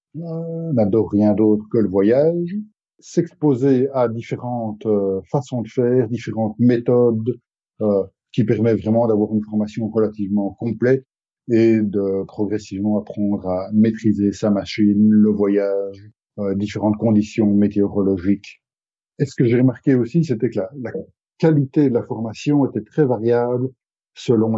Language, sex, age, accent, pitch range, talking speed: French, male, 50-69, French, 105-125 Hz, 140 wpm